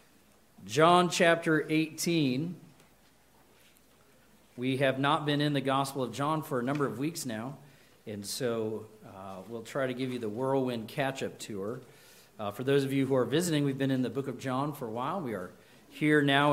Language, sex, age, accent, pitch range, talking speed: English, male, 40-59, American, 135-170 Hz, 190 wpm